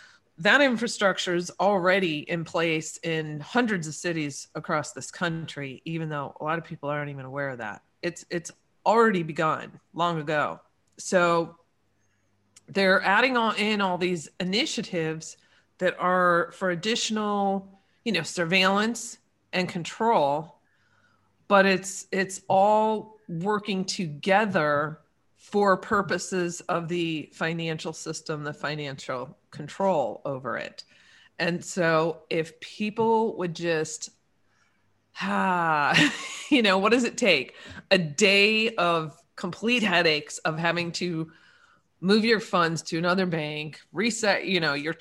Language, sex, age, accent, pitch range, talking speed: English, female, 40-59, American, 155-200 Hz, 130 wpm